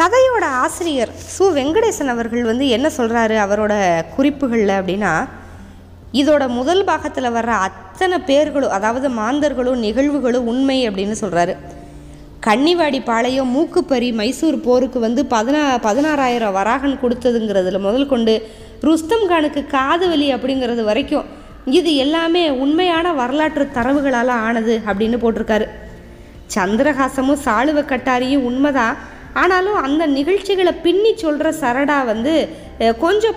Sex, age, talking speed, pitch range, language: female, 20-39, 105 wpm, 220-295 Hz, Tamil